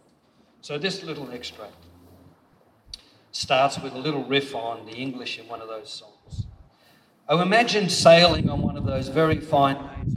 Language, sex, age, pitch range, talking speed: English, male, 50-69, 120-145 Hz, 160 wpm